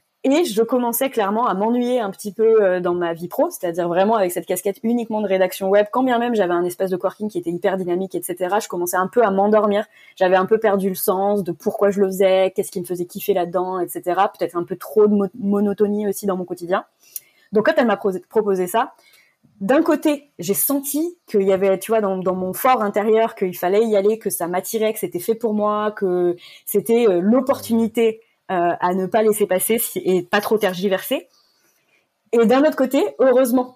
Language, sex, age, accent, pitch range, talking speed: French, female, 20-39, French, 195-255 Hz, 215 wpm